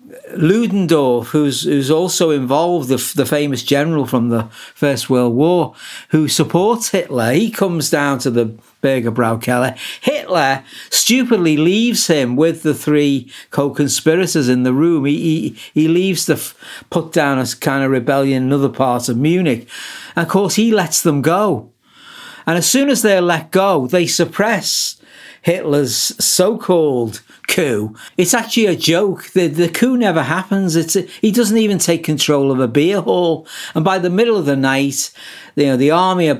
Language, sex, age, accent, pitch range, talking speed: English, male, 60-79, British, 130-175 Hz, 165 wpm